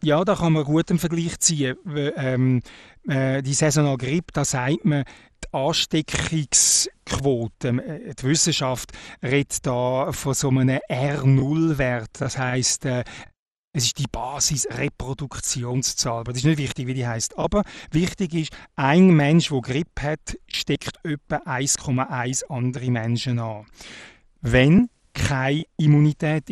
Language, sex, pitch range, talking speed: German, male, 125-155 Hz, 135 wpm